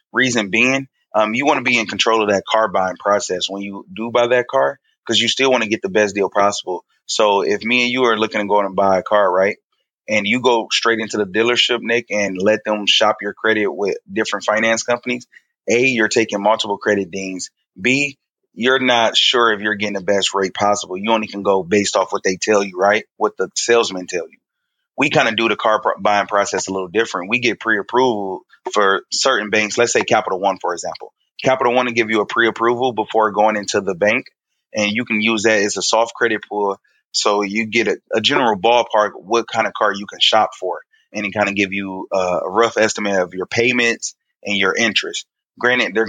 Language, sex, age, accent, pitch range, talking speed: English, male, 20-39, American, 100-115 Hz, 225 wpm